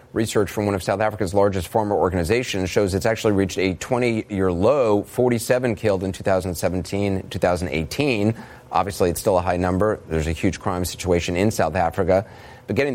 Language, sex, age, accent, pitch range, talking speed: English, male, 30-49, American, 95-120 Hz, 170 wpm